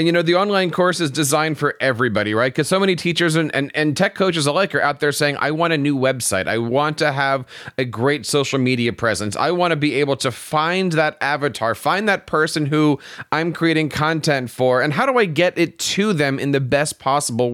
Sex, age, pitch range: male, 30-49, 140-180 Hz